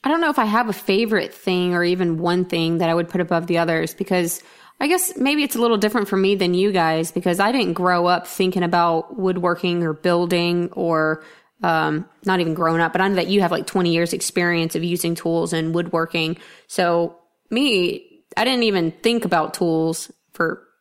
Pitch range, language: 170-200 Hz, English